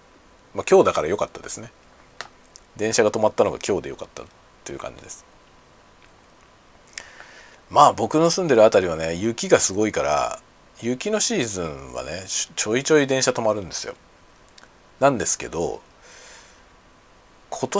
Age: 40-59